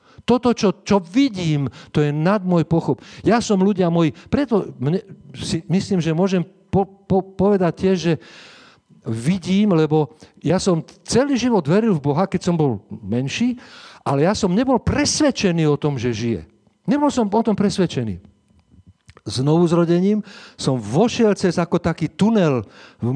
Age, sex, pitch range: 50-69, male, 145-195 Hz